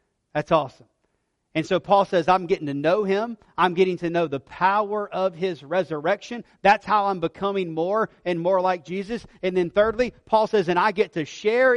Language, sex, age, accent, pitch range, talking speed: English, male, 40-59, American, 150-200 Hz, 200 wpm